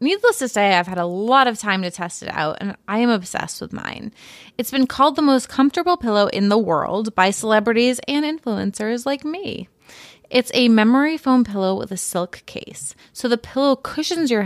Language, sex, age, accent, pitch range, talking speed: English, female, 20-39, American, 190-245 Hz, 205 wpm